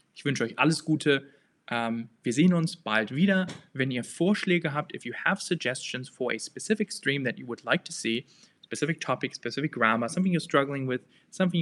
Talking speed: 195 wpm